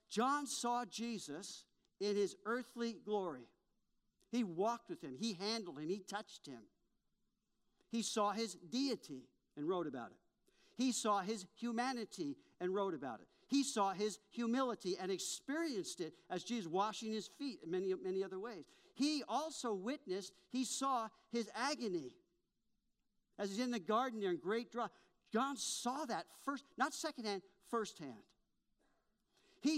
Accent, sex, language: American, male, English